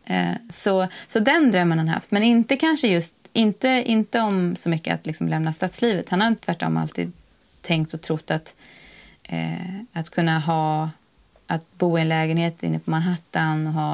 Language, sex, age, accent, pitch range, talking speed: Swedish, female, 20-39, native, 155-185 Hz, 185 wpm